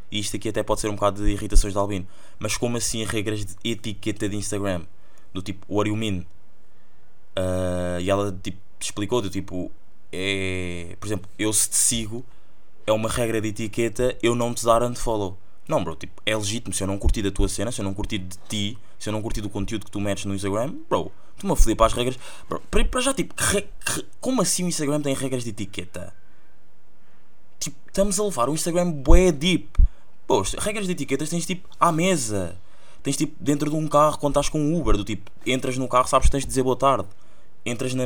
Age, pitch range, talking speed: 20-39, 100-125 Hz, 220 wpm